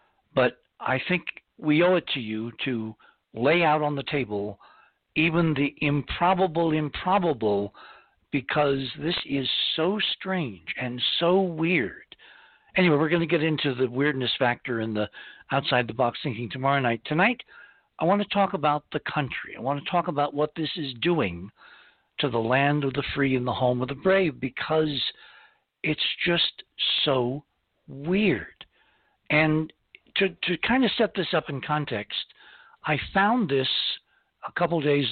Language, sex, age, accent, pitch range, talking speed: English, male, 60-79, American, 130-170 Hz, 155 wpm